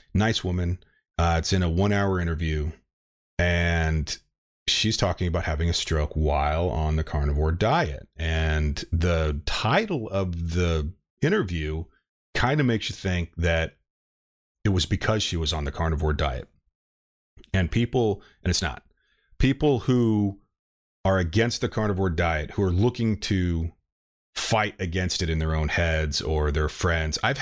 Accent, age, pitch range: American, 30-49, 80-105 Hz